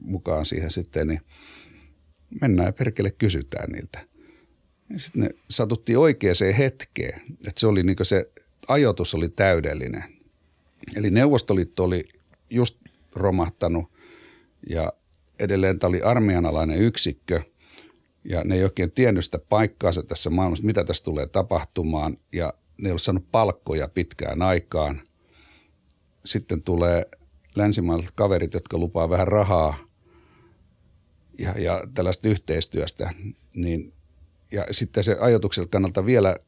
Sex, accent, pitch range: male, native, 85-100 Hz